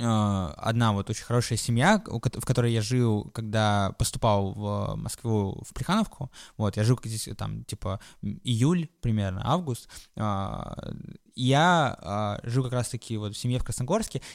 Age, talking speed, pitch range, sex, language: 20-39, 140 wpm, 110-150 Hz, male, Russian